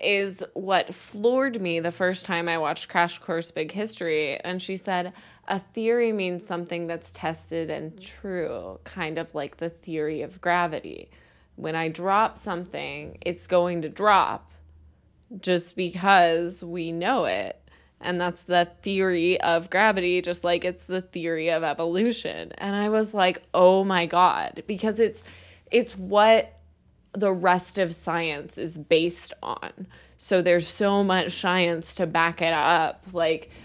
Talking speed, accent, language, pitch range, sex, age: 150 wpm, American, English, 165-190 Hz, female, 20-39